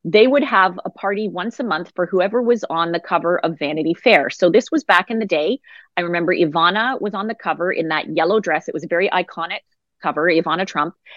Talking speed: 230 wpm